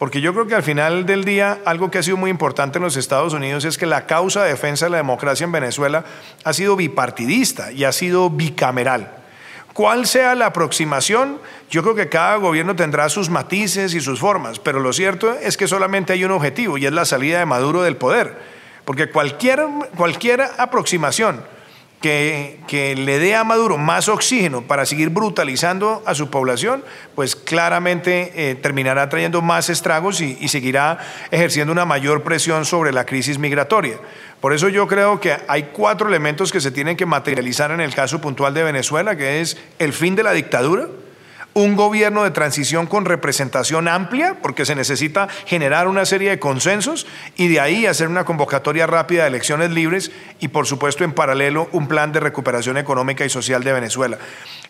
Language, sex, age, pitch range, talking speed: Spanish, male, 40-59, 145-190 Hz, 185 wpm